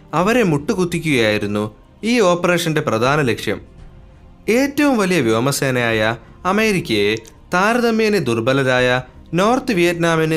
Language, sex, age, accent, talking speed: Malayalam, male, 30-49, native, 80 wpm